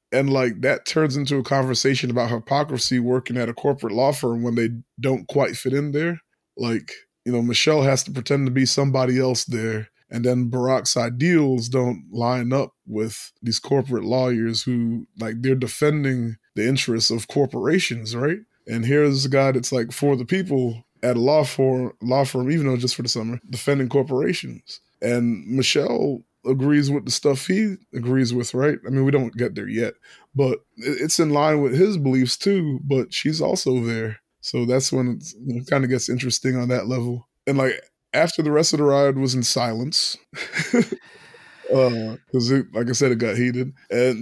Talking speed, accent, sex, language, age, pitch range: 190 wpm, American, male, English, 20-39, 120-140 Hz